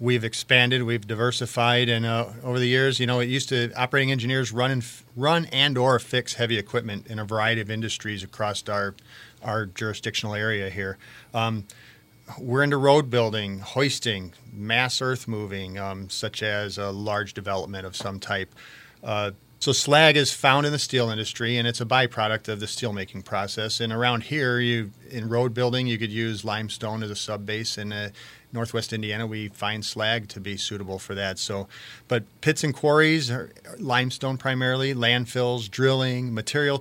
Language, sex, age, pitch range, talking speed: English, male, 40-59, 110-125 Hz, 175 wpm